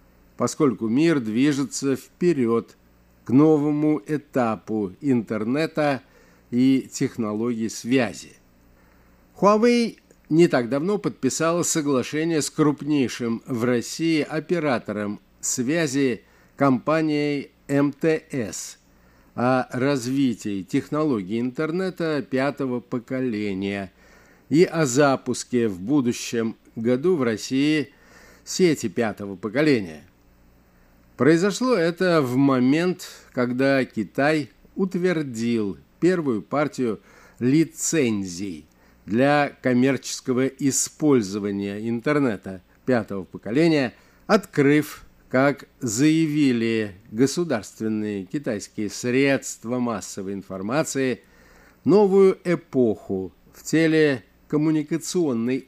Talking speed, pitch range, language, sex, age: 75 wpm, 105-150 Hz, Russian, male, 50-69